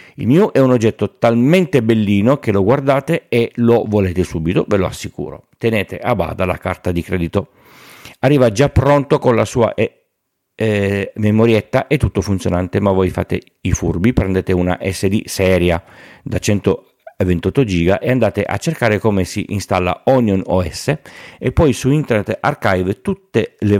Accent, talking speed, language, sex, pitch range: native, 160 wpm, Italian, male, 90-115 Hz